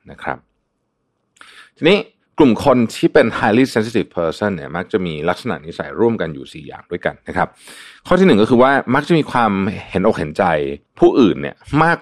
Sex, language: male, Thai